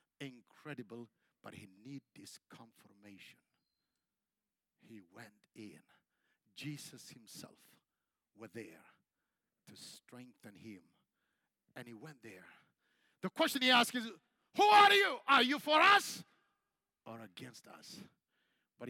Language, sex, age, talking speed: Swedish, male, 50-69, 115 wpm